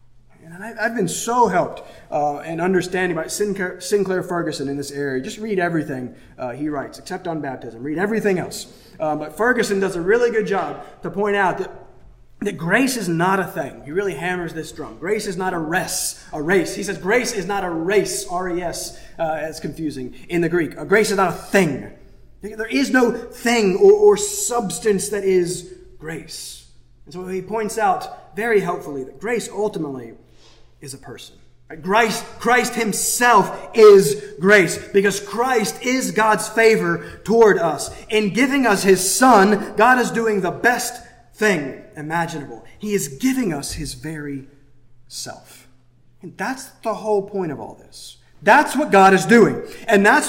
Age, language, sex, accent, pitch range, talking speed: 20-39, English, male, American, 165-215 Hz, 170 wpm